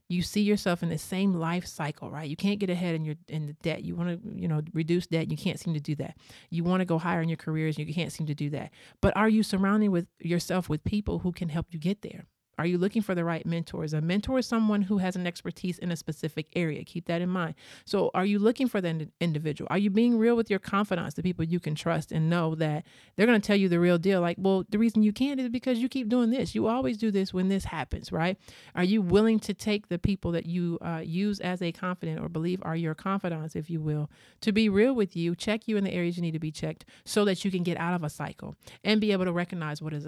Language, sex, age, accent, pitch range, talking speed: English, male, 40-59, American, 160-195 Hz, 280 wpm